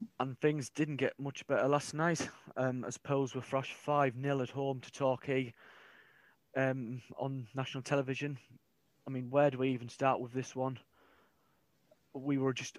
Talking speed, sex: 165 wpm, male